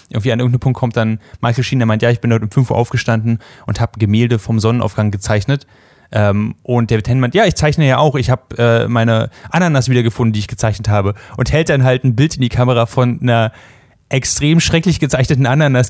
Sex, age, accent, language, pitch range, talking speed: male, 10-29, German, German, 115-145 Hz, 225 wpm